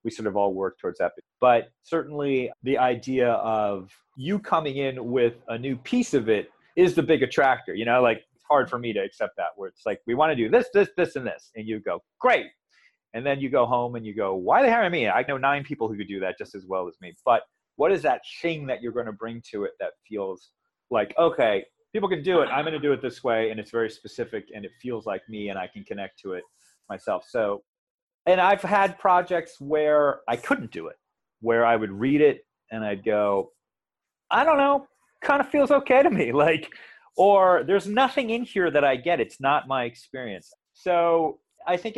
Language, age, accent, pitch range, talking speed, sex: English, 30-49, American, 115-175 Hz, 235 wpm, male